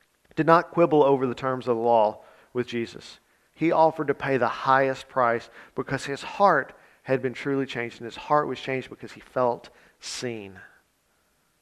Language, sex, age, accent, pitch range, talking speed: English, male, 40-59, American, 120-150 Hz, 175 wpm